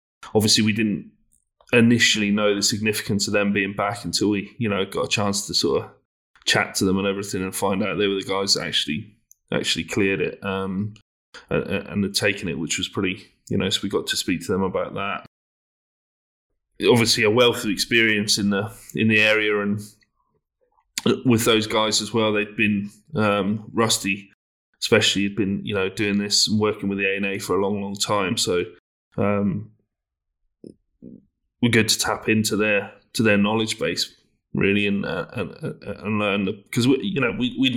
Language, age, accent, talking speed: English, 20-39, British, 195 wpm